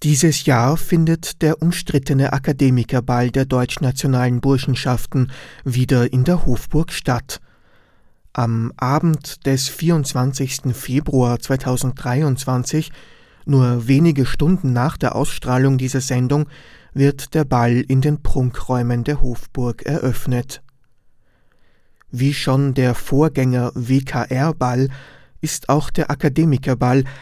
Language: German